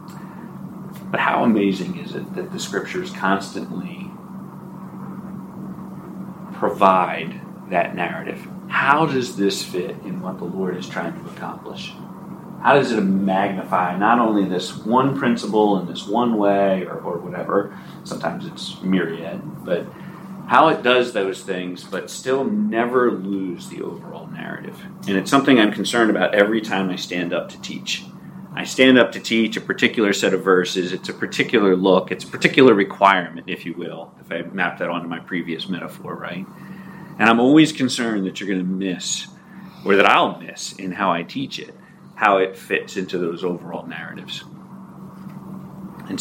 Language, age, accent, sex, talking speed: English, 40-59, American, male, 160 wpm